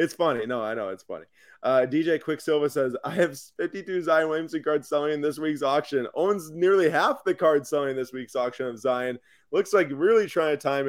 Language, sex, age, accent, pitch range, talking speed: English, male, 20-39, American, 120-150 Hz, 215 wpm